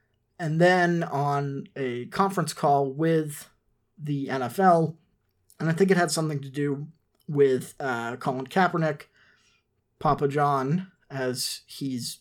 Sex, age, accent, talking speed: male, 30-49, American, 125 wpm